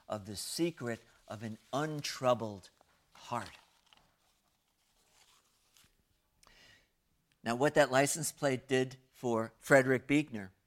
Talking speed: 90 wpm